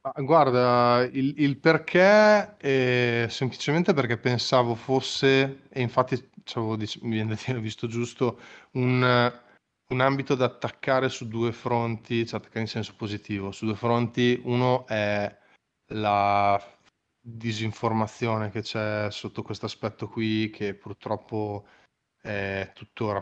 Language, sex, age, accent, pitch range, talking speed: Italian, male, 20-39, native, 110-125 Hz, 120 wpm